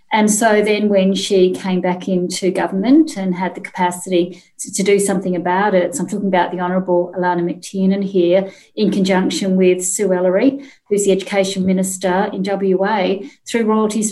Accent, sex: Australian, female